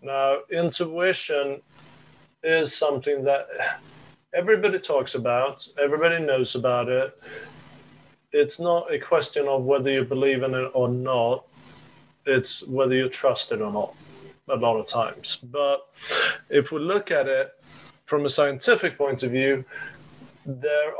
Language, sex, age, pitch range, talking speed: English, male, 30-49, 130-150 Hz, 135 wpm